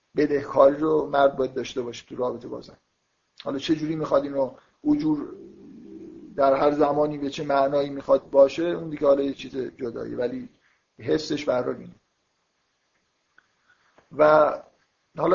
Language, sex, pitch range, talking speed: Persian, male, 135-155 Hz, 135 wpm